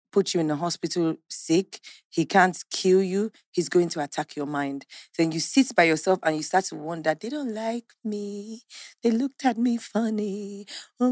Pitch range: 170-225 Hz